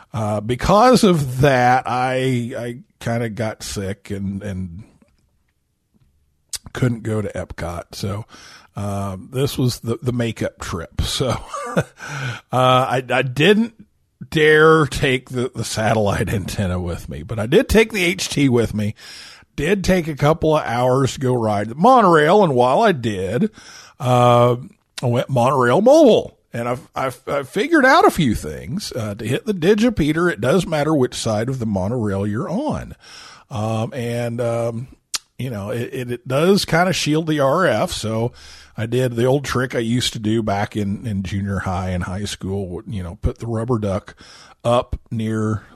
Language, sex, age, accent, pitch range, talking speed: English, male, 50-69, American, 105-135 Hz, 170 wpm